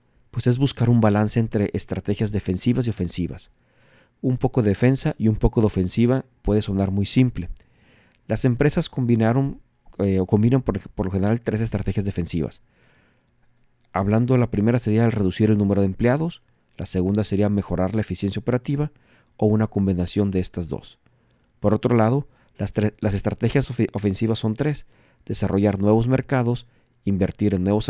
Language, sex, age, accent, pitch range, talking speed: Spanish, male, 40-59, Mexican, 100-120 Hz, 150 wpm